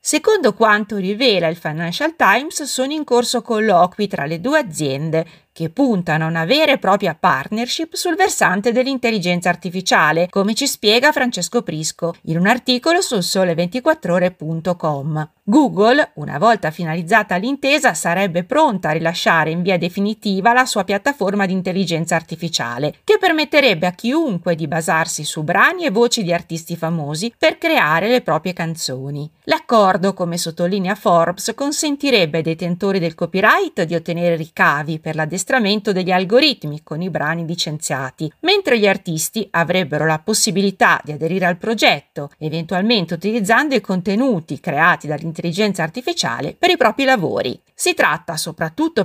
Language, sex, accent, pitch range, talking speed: Italian, female, native, 165-235 Hz, 140 wpm